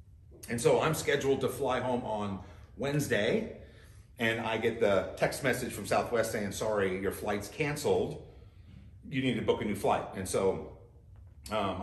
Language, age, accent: English, 40-59, American